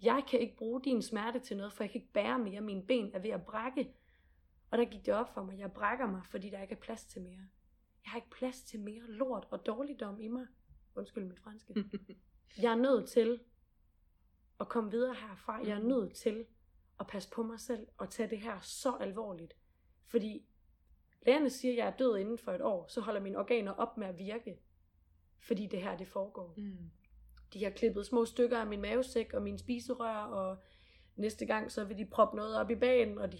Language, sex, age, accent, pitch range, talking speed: Danish, female, 30-49, native, 195-245 Hz, 220 wpm